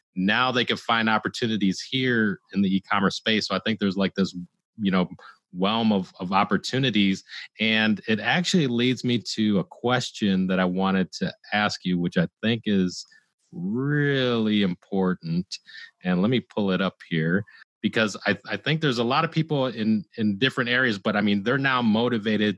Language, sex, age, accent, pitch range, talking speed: English, male, 30-49, American, 100-125 Hz, 180 wpm